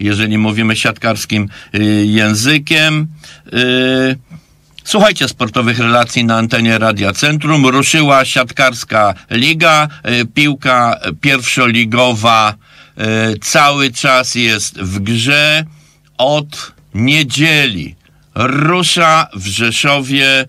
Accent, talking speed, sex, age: Polish, 75 wpm, male, 50-69